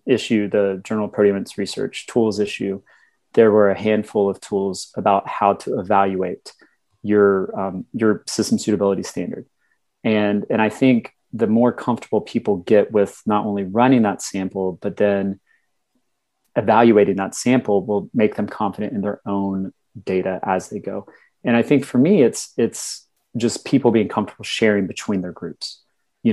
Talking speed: 160 wpm